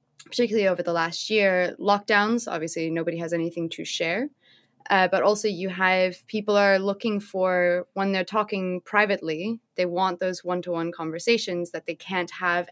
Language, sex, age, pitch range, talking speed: English, female, 20-39, 175-205 Hz, 160 wpm